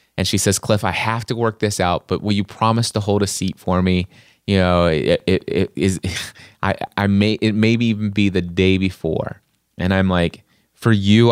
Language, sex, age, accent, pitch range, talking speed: English, male, 30-49, American, 95-115 Hz, 215 wpm